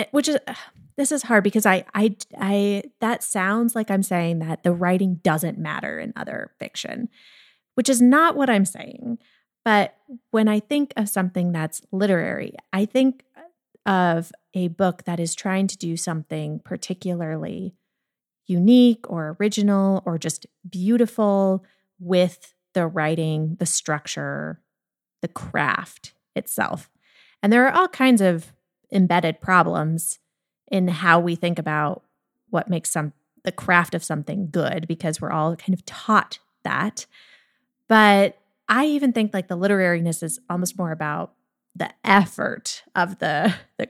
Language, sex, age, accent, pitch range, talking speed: English, female, 30-49, American, 170-220 Hz, 145 wpm